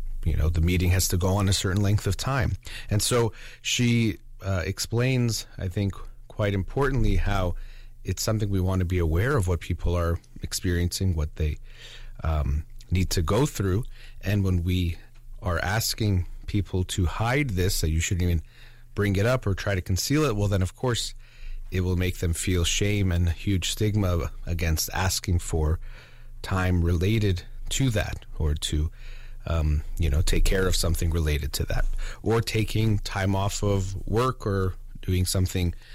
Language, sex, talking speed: English, male, 175 wpm